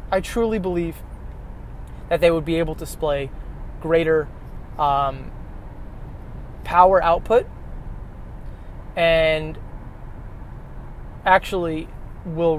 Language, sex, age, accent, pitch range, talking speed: English, male, 20-39, American, 140-170 Hz, 80 wpm